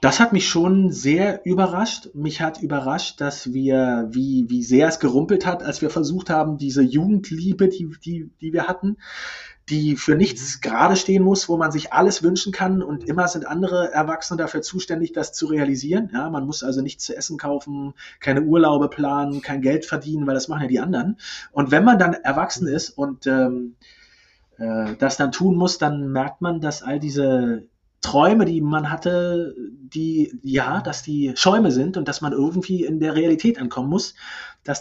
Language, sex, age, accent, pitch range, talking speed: German, male, 30-49, German, 130-175 Hz, 190 wpm